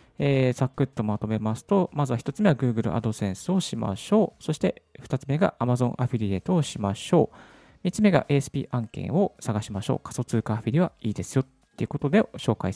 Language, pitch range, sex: Japanese, 110-155 Hz, male